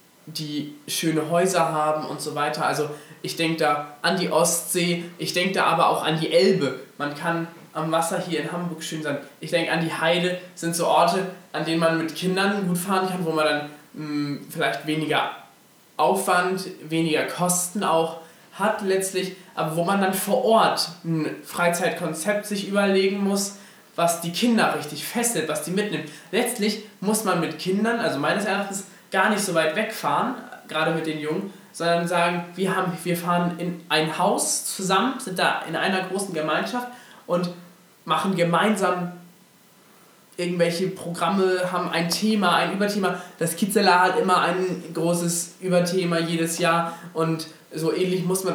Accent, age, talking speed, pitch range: German, 20-39, 165 wpm, 160-190 Hz